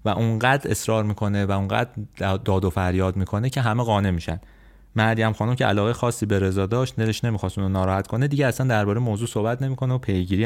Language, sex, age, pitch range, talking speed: Persian, male, 30-49, 95-120 Hz, 200 wpm